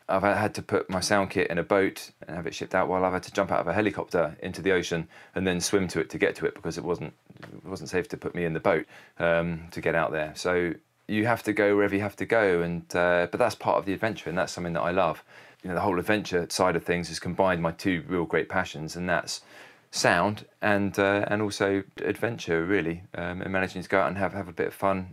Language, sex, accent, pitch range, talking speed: English, male, British, 85-100 Hz, 270 wpm